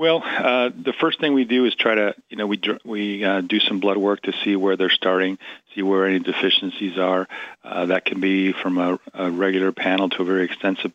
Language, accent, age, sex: English, American, 40-59, male